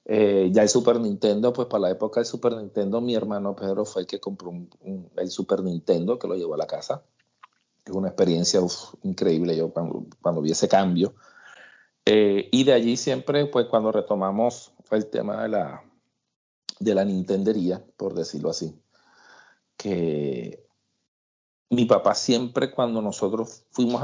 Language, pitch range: Spanish, 95-120 Hz